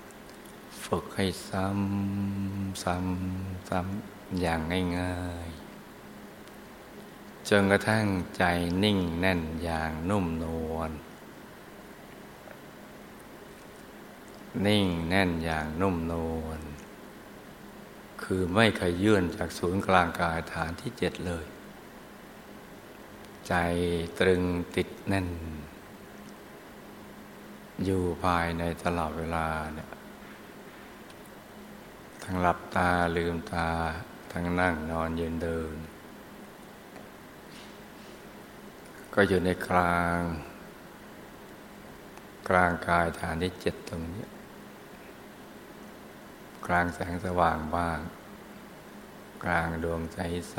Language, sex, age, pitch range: Thai, male, 60-79, 80-95 Hz